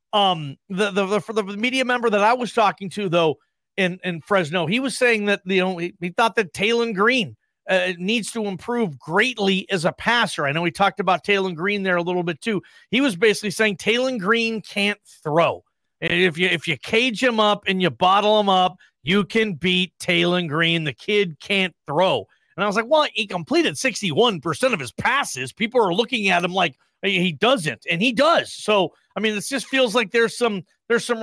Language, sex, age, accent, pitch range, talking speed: English, male, 40-59, American, 185-220 Hz, 215 wpm